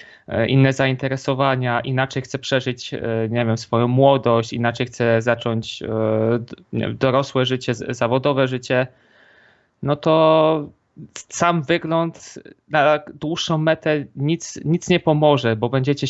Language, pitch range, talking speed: Polish, 120-140 Hz, 110 wpm